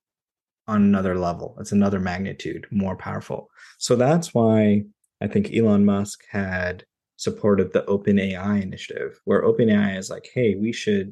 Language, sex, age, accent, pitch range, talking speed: English, male, 20-39, American, 95-110 Hz, 155 wpm